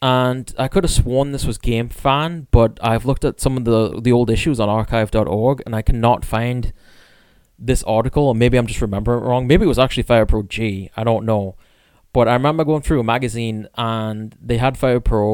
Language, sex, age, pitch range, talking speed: English, male, 20-39, 110-130 Hz, 220 wpm